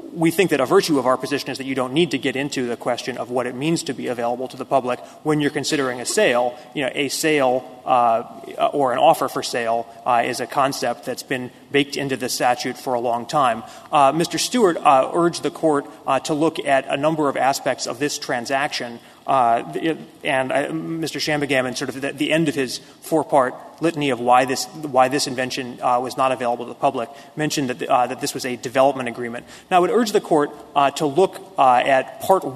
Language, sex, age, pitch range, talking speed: English, male, 30-49, 130-160 Hz, 230 wpm